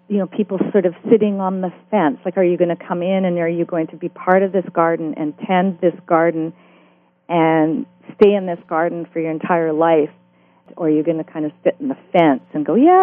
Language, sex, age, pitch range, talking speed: English, female, 40-59, 160-195 Hz, 245 wpm